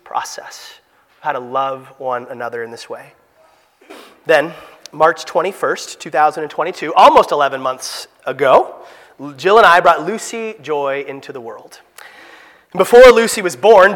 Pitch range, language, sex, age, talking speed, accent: 180-260 Hz, English, male, 30-49, 130 wpm, American